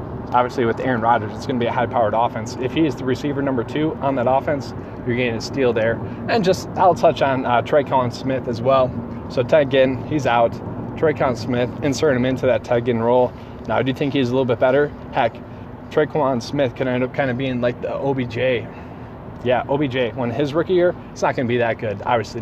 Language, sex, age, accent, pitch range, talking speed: English, male, 20-39, American, 120-130 Hz, 230 wpm